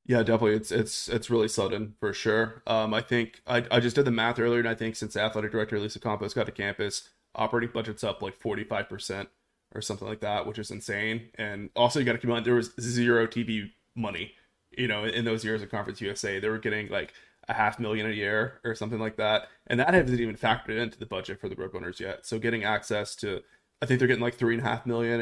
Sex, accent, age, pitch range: male, American, 20-39, 110-120 Hz